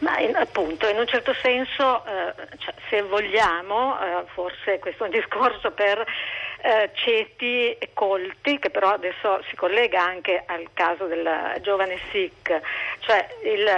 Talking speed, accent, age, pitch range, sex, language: 150 wpm, native, 50-69, 185-255 Hz, female, Italian